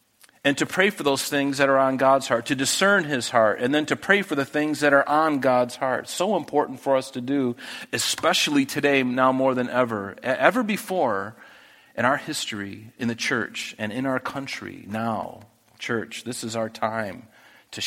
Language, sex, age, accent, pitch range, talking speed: English, male, 40-59, American, 125-180 Hz, 195 wpm